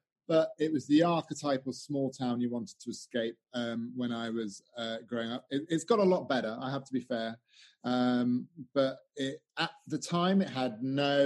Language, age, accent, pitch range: English, 30-49, British, 125-155 Hz